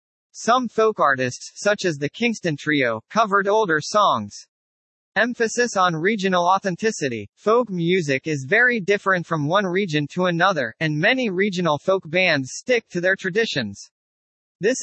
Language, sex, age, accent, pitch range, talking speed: English, male, 40-59, American, 150-210 Hz, 140 wpm